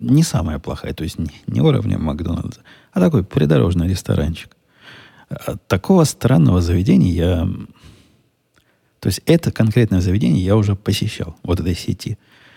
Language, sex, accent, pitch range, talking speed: Russian, male, native, 90-110 Hz, 130 wpm